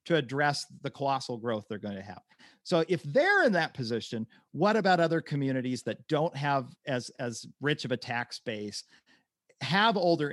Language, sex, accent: English, male, American